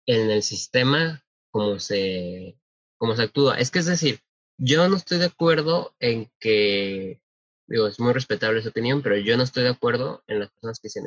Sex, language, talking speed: male, Spanish, 195 wpm